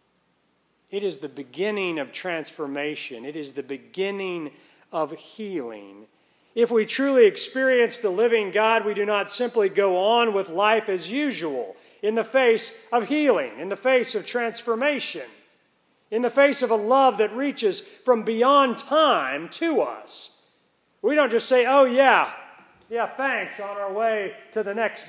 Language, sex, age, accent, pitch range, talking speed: English, male, 40-59, American, 175-260 Hz, 160 wpm